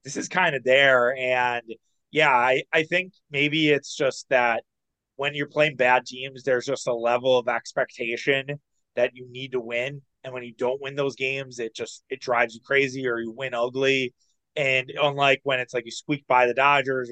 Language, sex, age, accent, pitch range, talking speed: English, male, 20-39, American, 125-150 Hz, 200 wpm